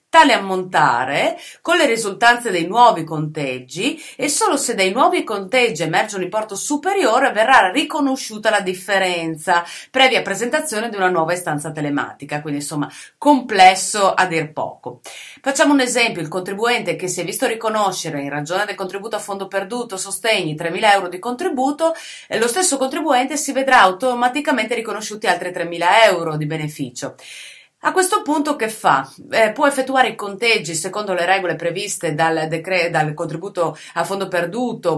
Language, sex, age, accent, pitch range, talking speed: Italian, female, 30-49, native, 165-230 Hz, 155 wpm